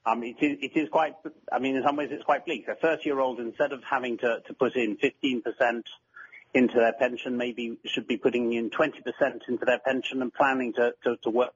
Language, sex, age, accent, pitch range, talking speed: English, male, 30-49, British, 115-140 Hz, 215 wpm